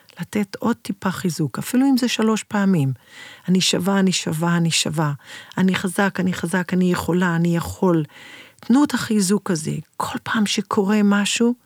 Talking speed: 160 wpm